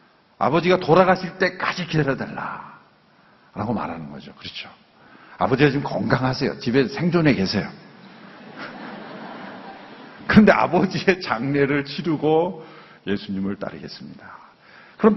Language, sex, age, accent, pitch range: Korean, male, 50-69, native, 110-170 Hz